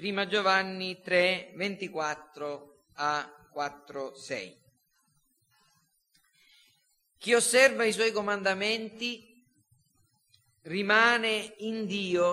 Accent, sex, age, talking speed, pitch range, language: native, male, 40-59, 75 wpm, 175-225 Hz, Italian